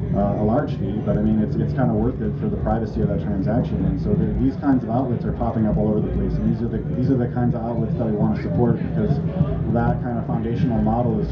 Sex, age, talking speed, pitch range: male, 30-49, 290 wpm, 125-145 Hz